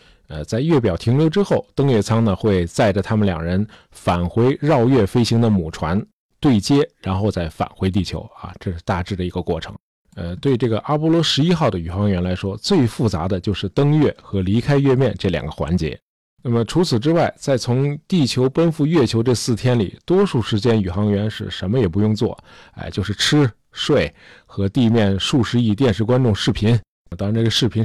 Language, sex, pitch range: Chinese, male, 100-140 Hz